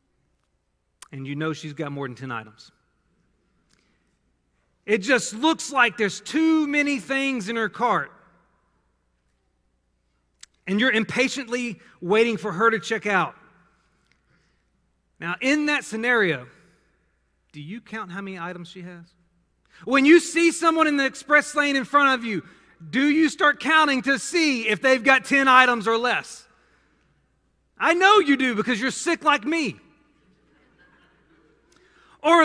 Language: English